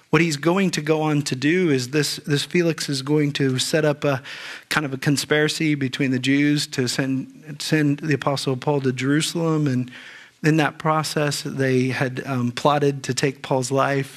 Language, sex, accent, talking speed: English, male, American, 190 wpm